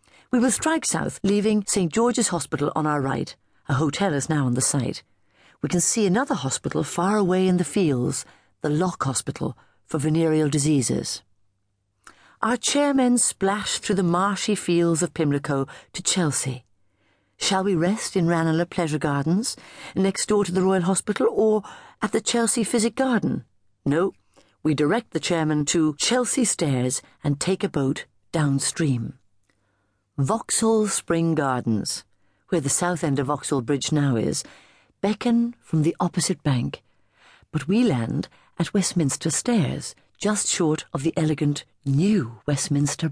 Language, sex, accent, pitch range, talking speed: English, female, British, 140-195 Hz, 150 wpm